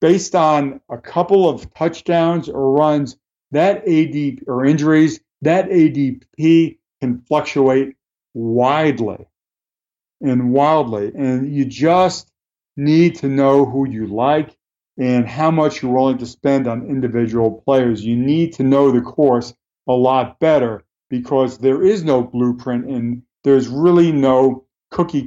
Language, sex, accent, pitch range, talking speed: English, male, American, 120-145 Hz, 135 wpm